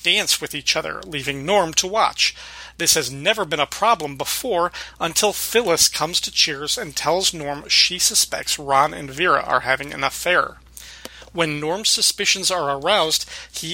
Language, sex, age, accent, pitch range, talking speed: English, male, 40-59, American, 145-180 Hz, 165 wpm